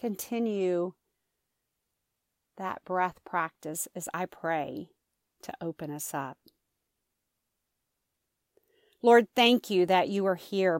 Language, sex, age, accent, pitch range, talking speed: English, female, 40-59, American, 165-200 Hz, 100 wpm